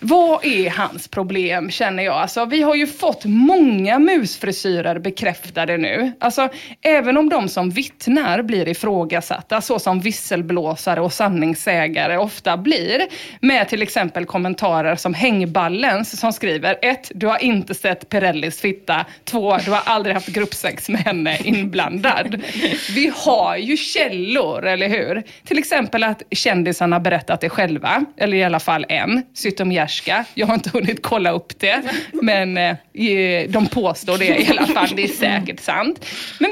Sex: female